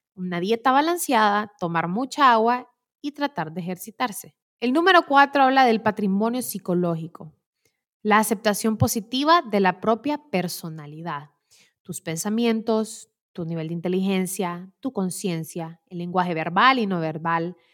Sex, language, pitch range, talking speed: female, Spanish, 180-250 Hz, 130 wpm